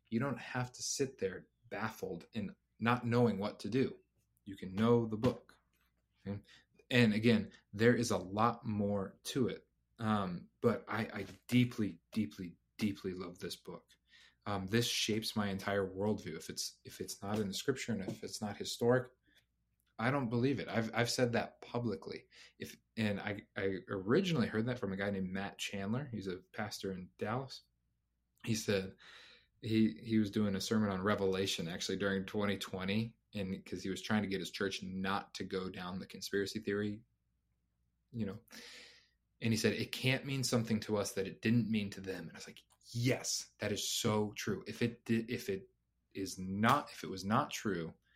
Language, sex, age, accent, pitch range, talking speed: English, male, 30-49, American, 95-115 Hz, 190 wpm